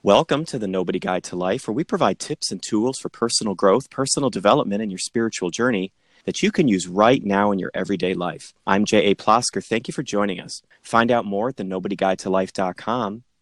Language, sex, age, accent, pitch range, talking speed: English, male, 30-49, American, 95-115 Hz, 200 wpm